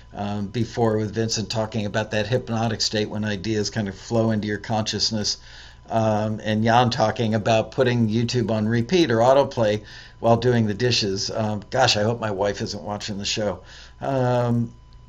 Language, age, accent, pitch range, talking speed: English, 50-69, American, 100-130 Hz, 170 wpm